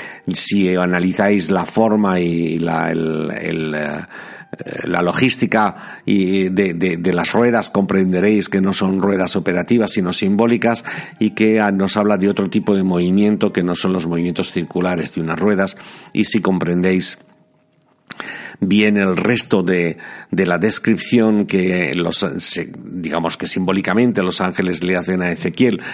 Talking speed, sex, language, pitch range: 140 wpm, male, Spanish, 90-110 Hz